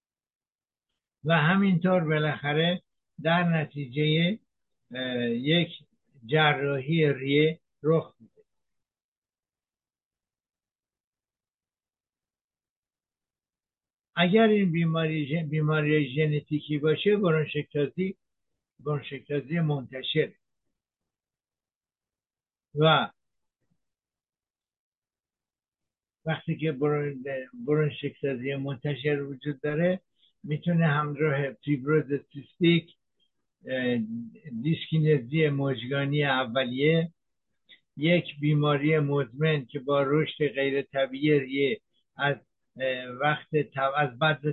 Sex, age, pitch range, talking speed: male, 60-79, 140-160 Hz, 60 wpm